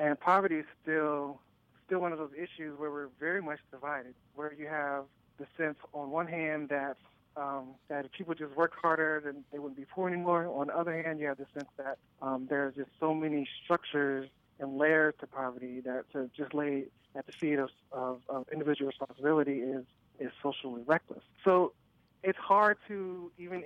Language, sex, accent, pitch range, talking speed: English, male, American, 135-160 Hz, 195 wpm